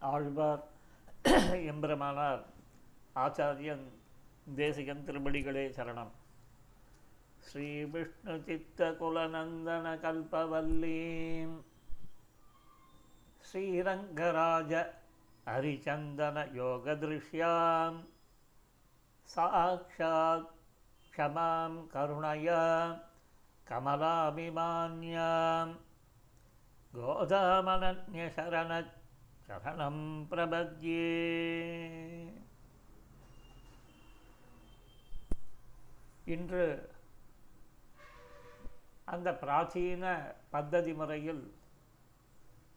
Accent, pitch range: native, 135-165 Hz